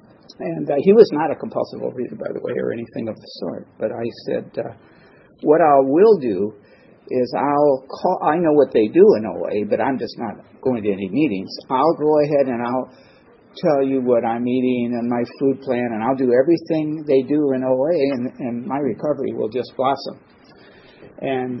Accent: American